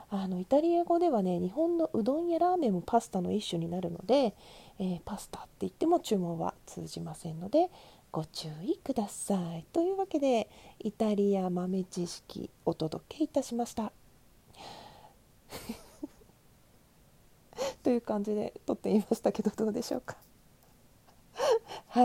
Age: 40-59